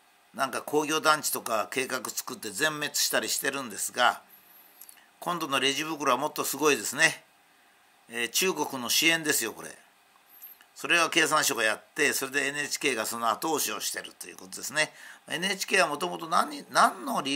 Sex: male